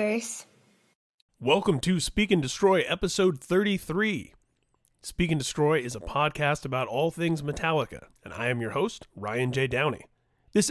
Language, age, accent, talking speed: English, 30-49, American, 145 wpm